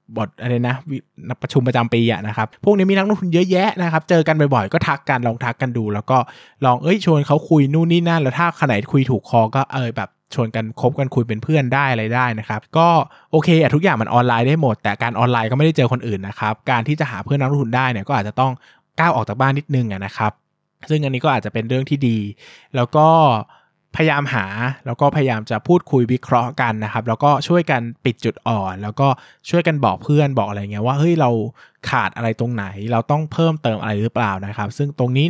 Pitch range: 110-145 Hz